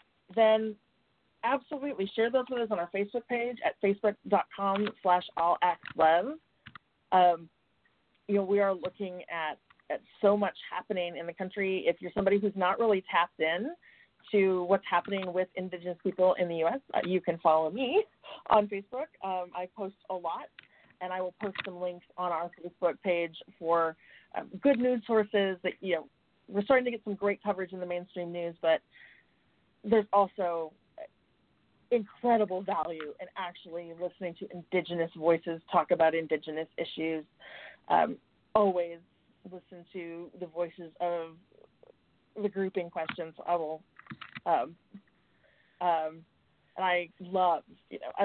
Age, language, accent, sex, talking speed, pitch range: 30-49, English, American, female, 150 wpm, 170-205 Hz